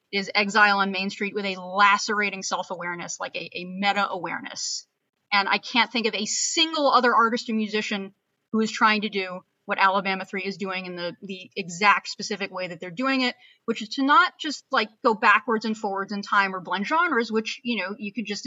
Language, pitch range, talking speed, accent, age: English, 185-220 Hz, 210 wpm, American, 30-49